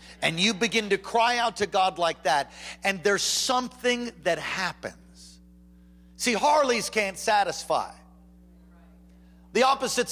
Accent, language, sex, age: American, English, male, 50-69